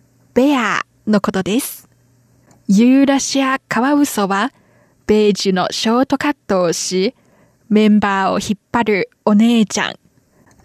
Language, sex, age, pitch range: Japanese, female, 20-39, 200-255 Hz